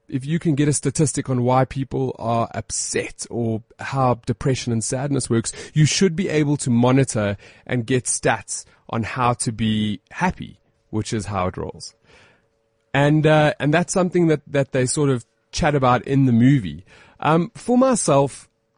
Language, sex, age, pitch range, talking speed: English, male, 30-49, 115-155 Hz, 175 wpm